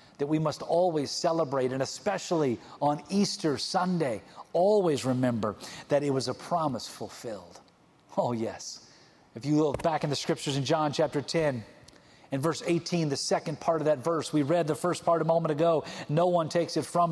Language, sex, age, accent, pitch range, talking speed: English, male, 40-59, American, 150-215 Hz, 185 wpm